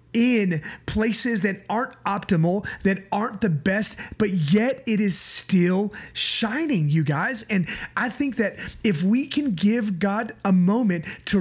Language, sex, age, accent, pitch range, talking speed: English, male, 30-49, American, 190-235 Hz, 155 wpm